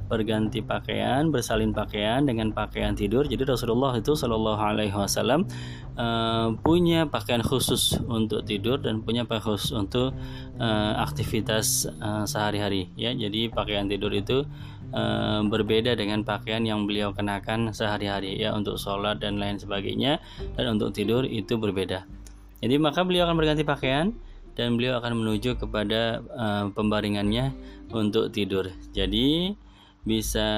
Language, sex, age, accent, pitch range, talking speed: Indonesian, male, 20-39, native, 100-125 Hz, 125 wpm